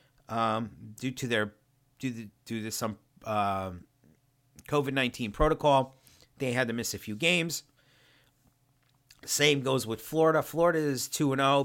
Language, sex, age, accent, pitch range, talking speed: English, male, 40-59, American, 115-140 Hz, 150 wpm